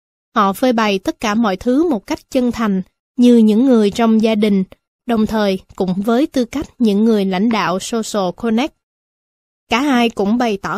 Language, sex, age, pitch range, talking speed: Vietnamese, female, 20-39, 200-245 Hz, 190 wpm